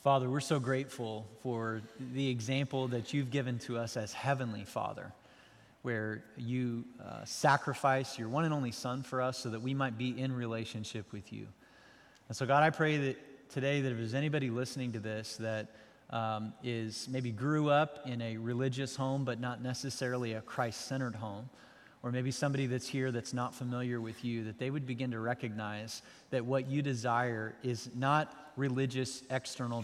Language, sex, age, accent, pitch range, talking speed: English, male, 30-49, American, 115-135 Hz, 180 wpm